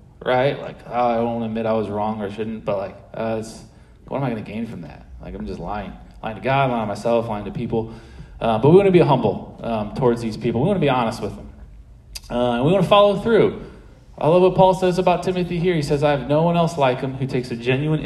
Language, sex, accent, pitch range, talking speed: English, male, American, 115-155 Hz, 265 wpm